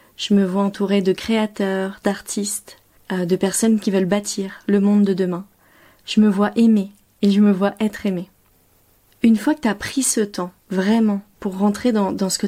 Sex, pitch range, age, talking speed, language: female, 190-215 Hz, 30-49, 200 wpm, French